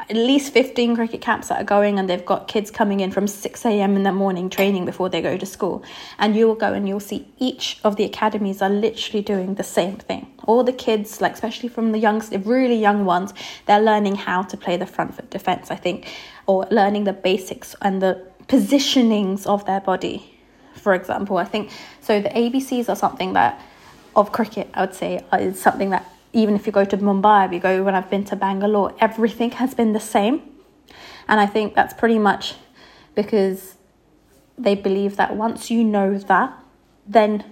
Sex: female